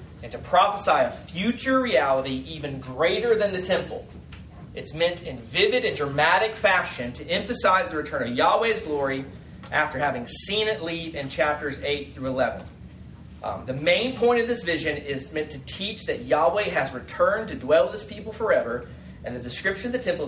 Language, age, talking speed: English, 30-49, 185 wpm